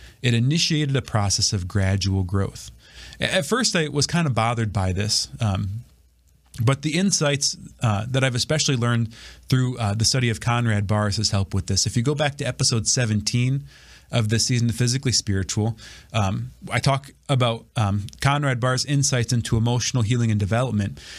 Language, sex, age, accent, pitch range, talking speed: English, male, 30-49, American, 110-140 Hz, 180 wpm